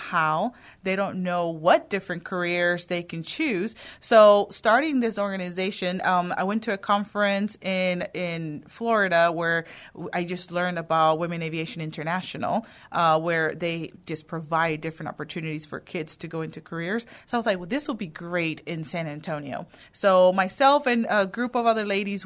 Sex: female